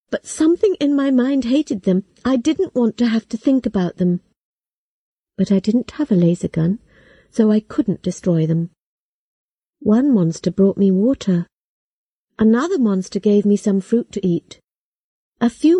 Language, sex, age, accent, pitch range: Chinese, female, 50-69, British, 190-250 Hz